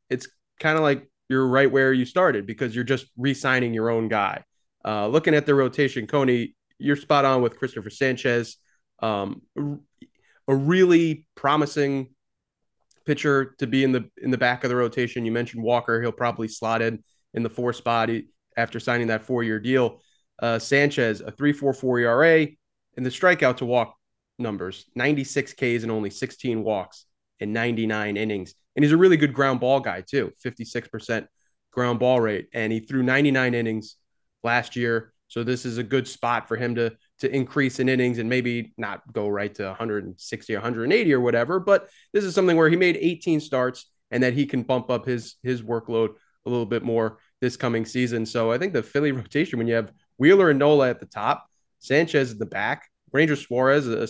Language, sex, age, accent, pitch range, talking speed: English, male, 20-39, American, 115-135 Hz, 185 wpm